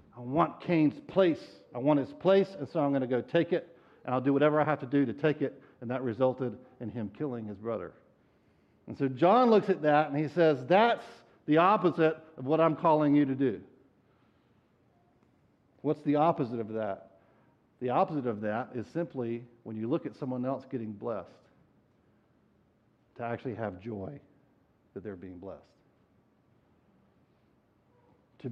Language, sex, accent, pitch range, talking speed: English, male, American, 120-160 Hz, 175 wpm